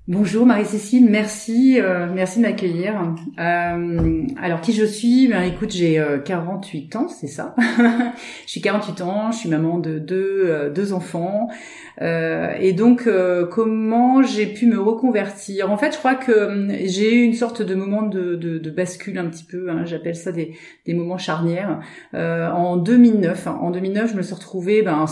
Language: French